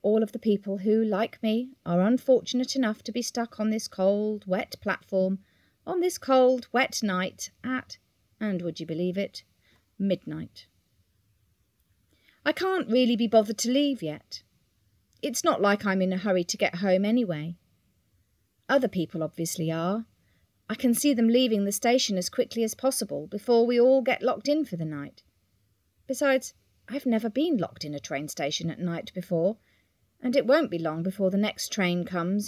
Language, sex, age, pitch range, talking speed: English, female, 40-59, 160-255 Hz, 175 wpm